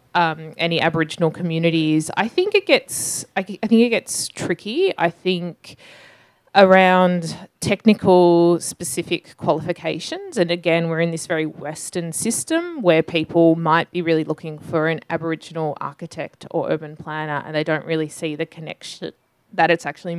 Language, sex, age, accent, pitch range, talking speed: English, female, 20-39, Australian, 155-175 Hz, 150 wpm